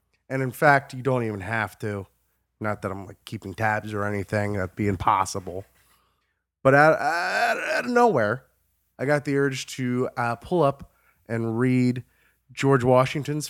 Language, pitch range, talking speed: English, 115-195 Hz, 155 wpm